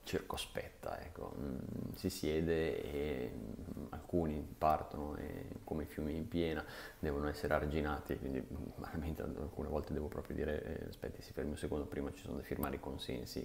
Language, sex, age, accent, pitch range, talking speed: Italian, male, 30-49, native, 75-85 Hz, 155 wpm